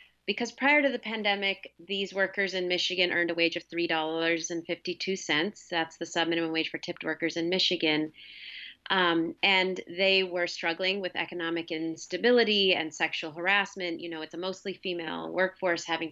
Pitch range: 170-195 Hz